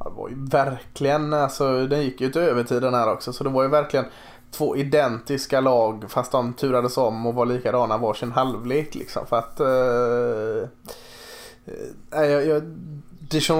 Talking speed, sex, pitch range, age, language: 160 wpm, male, 130-155 Hz, 20-39, Swedish